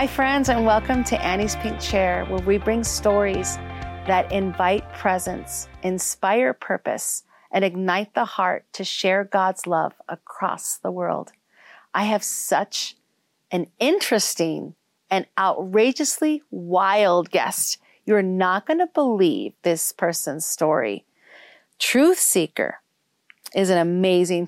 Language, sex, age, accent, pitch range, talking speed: English, female, 40-59, American, 185-270 Hz, 125 wpm